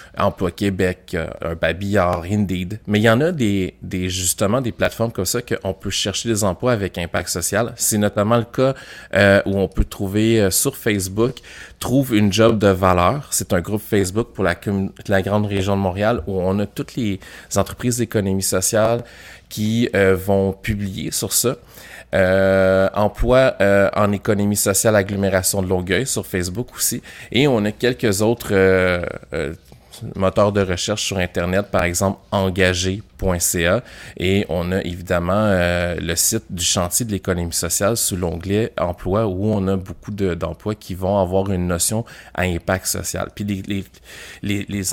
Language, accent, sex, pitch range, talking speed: French, Canadian, male, 95-110 Hz, 170 wpm